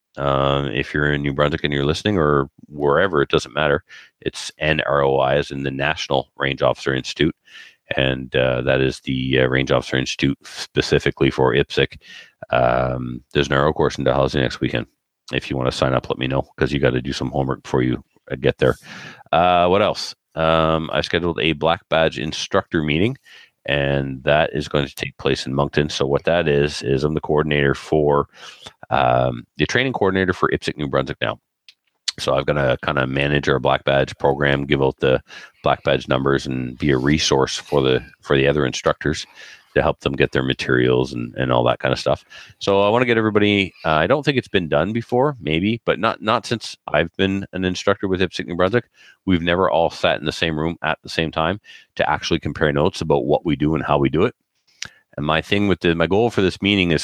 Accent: American